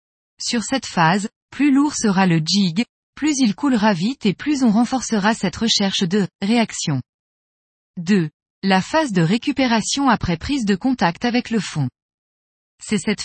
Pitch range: 185-245 Hz